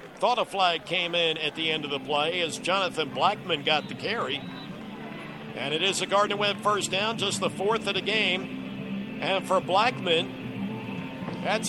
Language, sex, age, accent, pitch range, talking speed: English, male, 50-69, American, 185-215 Hz, 180 wpm